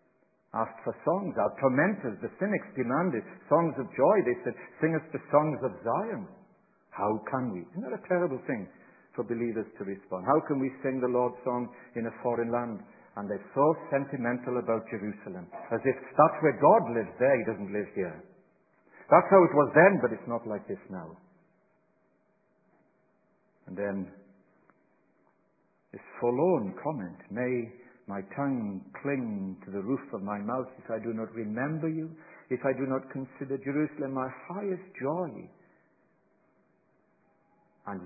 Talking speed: 160 wpm